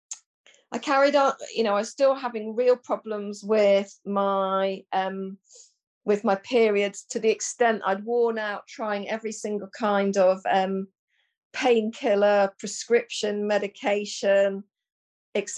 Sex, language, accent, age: female, English, British, 40-59